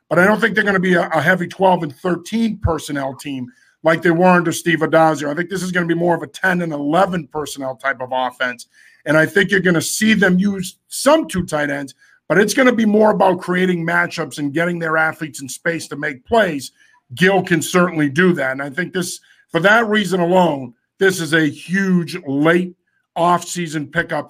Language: English